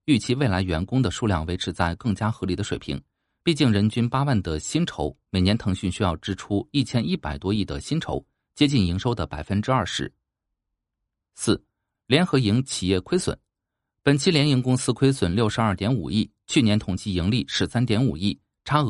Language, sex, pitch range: Chinese, male, 95-130 Hz